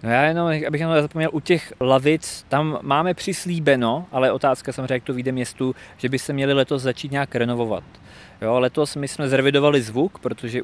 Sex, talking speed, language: male, 185 wpm, Czech